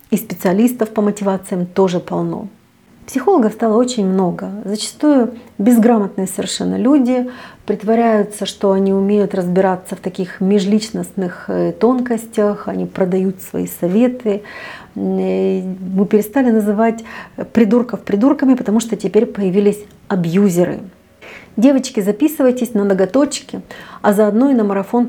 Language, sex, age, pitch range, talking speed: Russian, female, 40-59, 190-235 Hz, 110 wpm